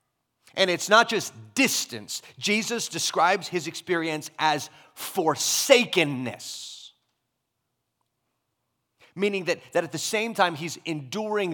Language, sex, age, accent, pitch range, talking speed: English, male, 30-49, American, 110-155 Hz, 105 wpm